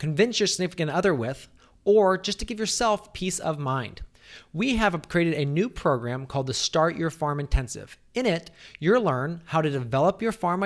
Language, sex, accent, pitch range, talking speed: English, male, American, 135-180 Hz, 190 wpm